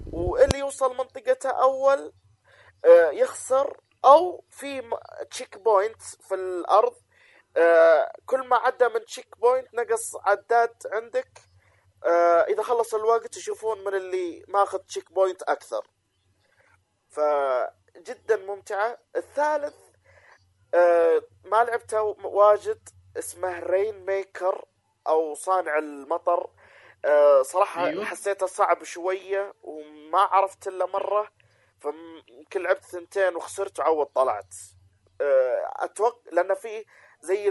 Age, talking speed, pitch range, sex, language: 30-49, 110 wpm, 170-255 Hz, male, Arabic